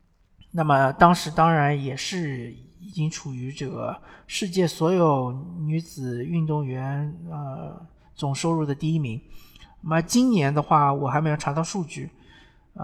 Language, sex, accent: Chinese, male, native